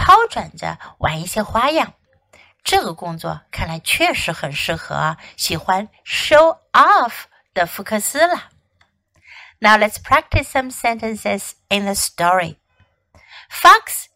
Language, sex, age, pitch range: Chinese, female, 60-79, 200-310 Hz